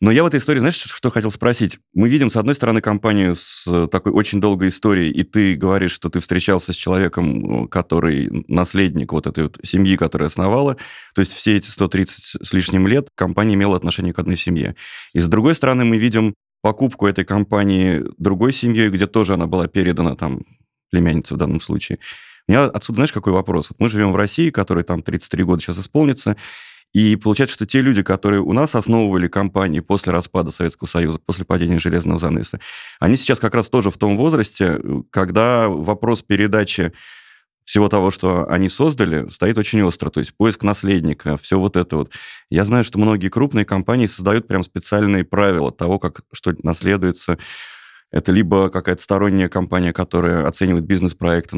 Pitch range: 85-105 Hz